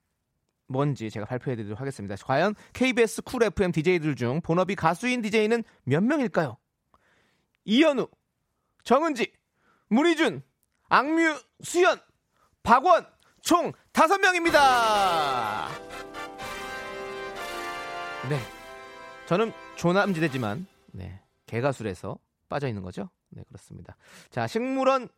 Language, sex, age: Korean, male, 30-49